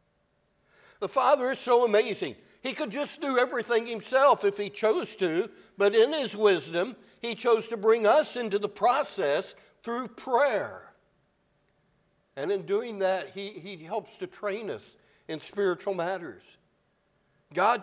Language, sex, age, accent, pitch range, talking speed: English, male, 60-79, American, 190-230 Hz, 145 wpm